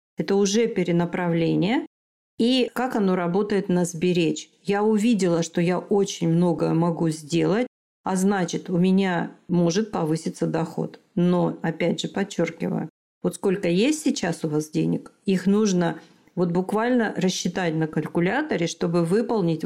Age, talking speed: 40-59, 130 wpm